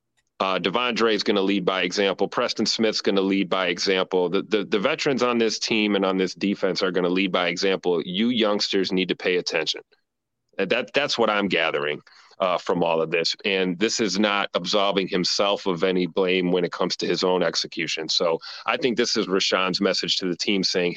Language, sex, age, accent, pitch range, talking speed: English, male, 30-49, American, 90-110 Hz, 220 wpm